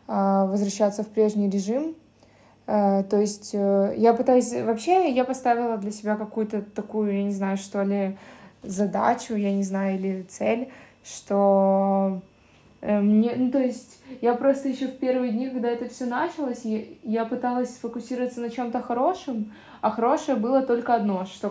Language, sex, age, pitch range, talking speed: Ukrainian, female, 20-39, 210-245 Hz, 150 wpm